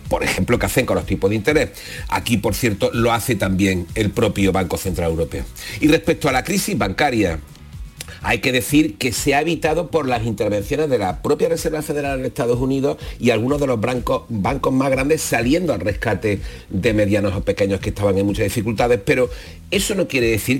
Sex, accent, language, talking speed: male, Spanish, Spanish, 200 wpm